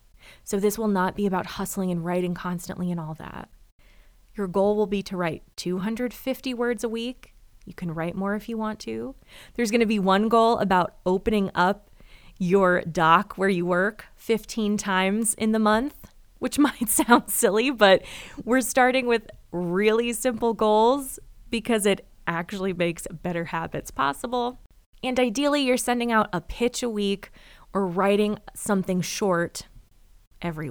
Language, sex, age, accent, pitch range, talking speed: English, female, 20-39, American, 180-245 Hz, 160 wpm